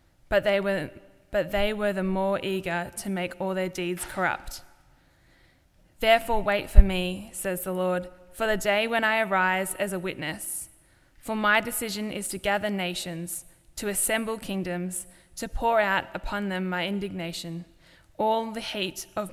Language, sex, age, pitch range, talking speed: English, female, 10-29, 180-215 Hz, 155 wpm